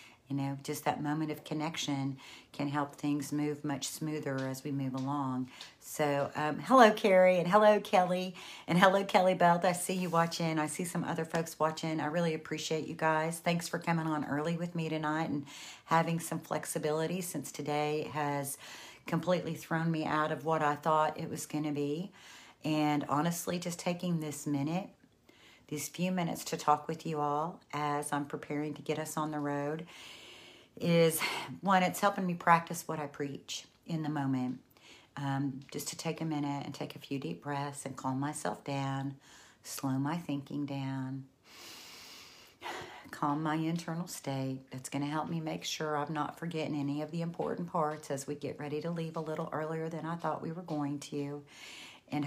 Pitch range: 145-165 Hz